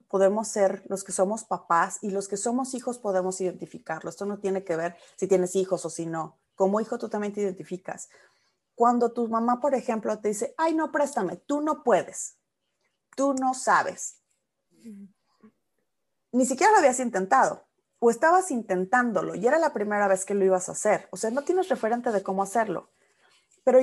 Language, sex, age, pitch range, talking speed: Spanish, female, 30-49, 185-240 Hz, 185 wpm